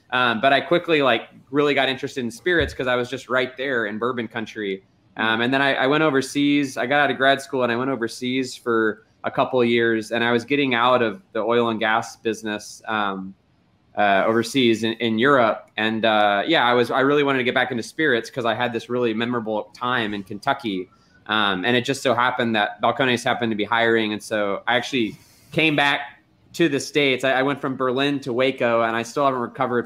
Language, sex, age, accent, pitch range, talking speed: English, male, 20-39, American, 110-135 Hz, 225 wpm